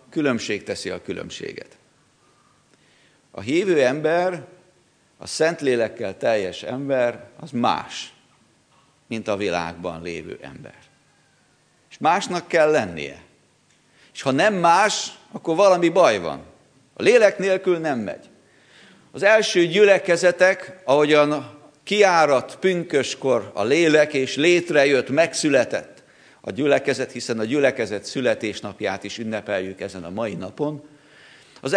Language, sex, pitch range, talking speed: Hungarian, male, 130-185 Hz, 115 wpm